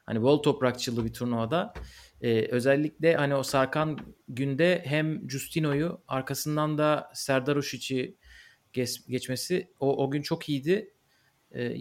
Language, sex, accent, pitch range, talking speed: Turkish, male, native, 125-155 Hz, 125 wpm